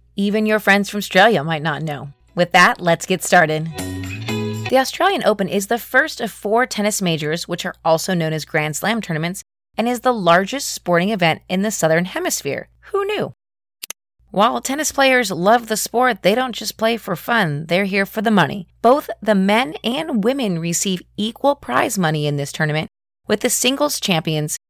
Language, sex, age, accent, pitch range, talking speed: English, female, 30-49, American, 165-220 Hz, 185 wpm